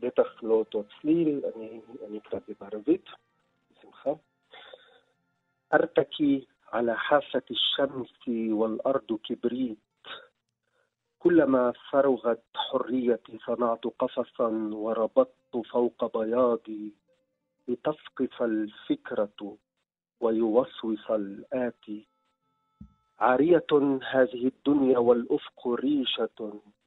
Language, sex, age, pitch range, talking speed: Hebrew, male, 40-59, 110-140 Hz, 50 wpm